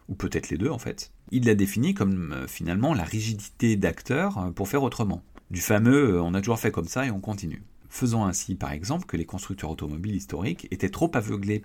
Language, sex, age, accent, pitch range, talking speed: French, male, 40-59, French, 85-115 Hz, 205 wpm